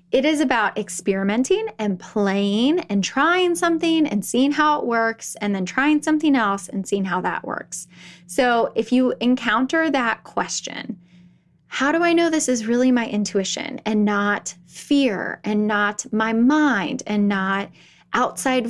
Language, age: English, 10-29